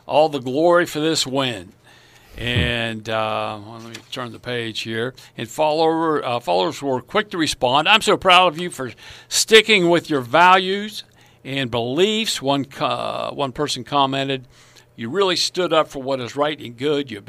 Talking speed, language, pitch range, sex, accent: 180 wpm, English, 120-155 Hz, male, American